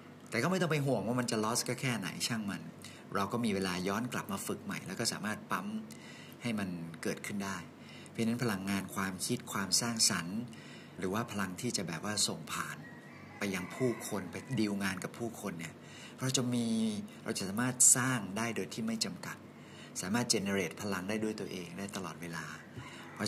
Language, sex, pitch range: Thai, male, 95-120 Hz